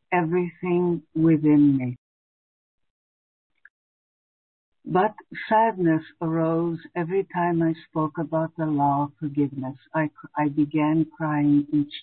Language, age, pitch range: English, 60-79, 145-175 Hz